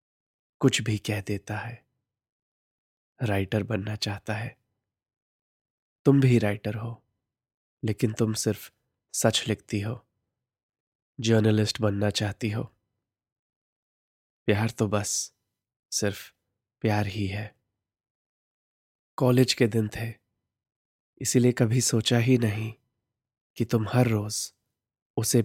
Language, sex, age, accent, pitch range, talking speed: Hindi, male, 20-39, native, 105-120 Hz, 105 wpm